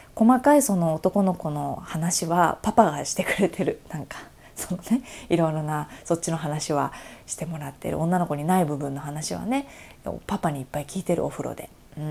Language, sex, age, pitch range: Japanese, female, 20-39, 165-255 Hz